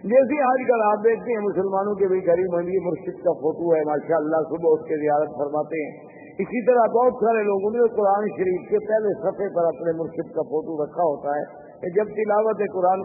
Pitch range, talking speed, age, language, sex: 175-220 Hz, 200 wpm, 50-69, Urdu, male